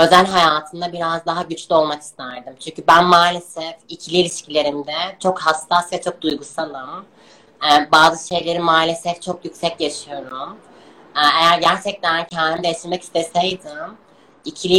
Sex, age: female, 20-39